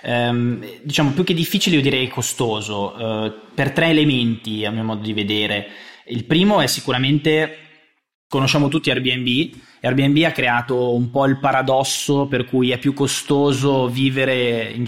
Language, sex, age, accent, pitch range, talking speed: Italian, male, 20-39, native, 115-140 Hz, 145 wpm